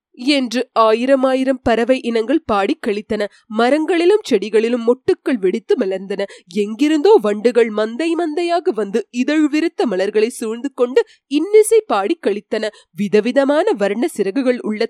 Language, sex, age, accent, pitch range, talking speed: Tamil, female, 30-49, native, 215-345 Hz, 105 wpm